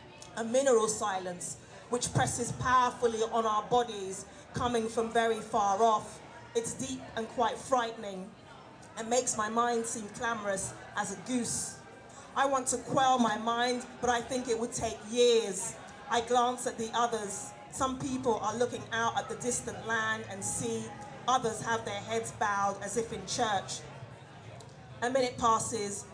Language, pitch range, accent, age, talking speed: English, 200-240 Hz, British, 30-49, 160 wpm